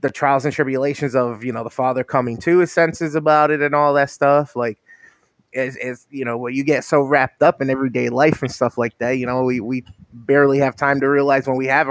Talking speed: 240 wpm